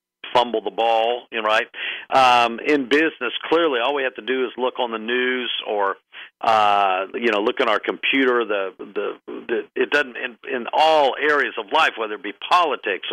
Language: English